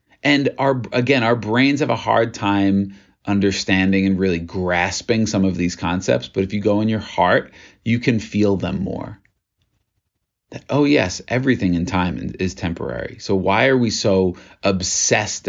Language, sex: English, male